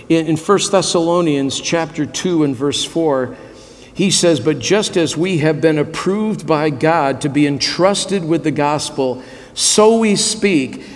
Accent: American